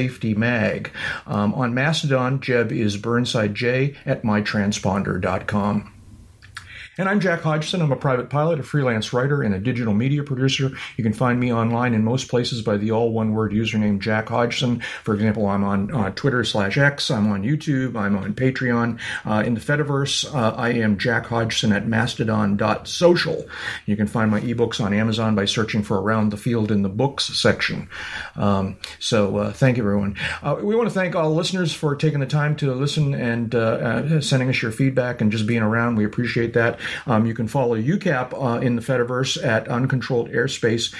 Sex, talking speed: male, 190 wpm